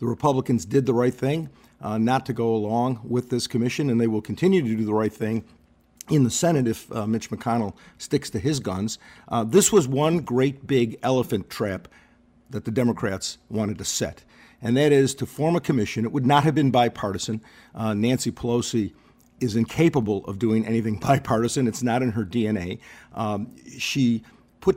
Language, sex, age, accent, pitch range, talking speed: English, male, 50-69, American, 110-140 Hz, 185 wpm